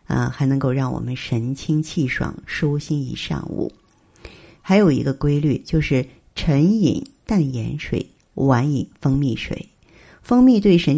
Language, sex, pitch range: Chinese, female, 135-165 Hz